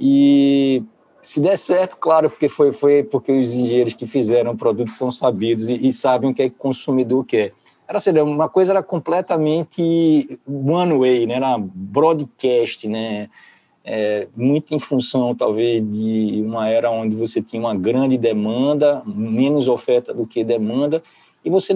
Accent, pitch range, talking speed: Brazilian, 115-155 Hz, 170 wpm